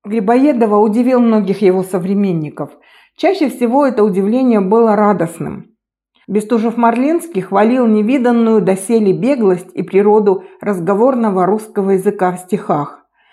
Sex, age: female, 50-69